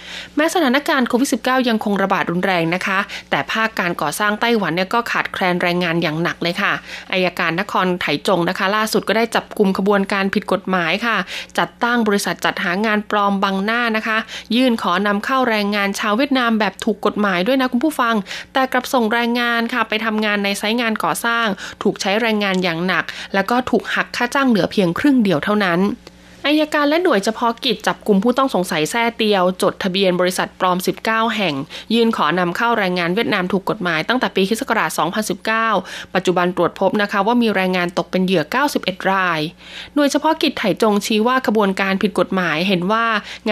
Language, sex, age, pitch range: Thai, female, 20-39, 185-235 Hz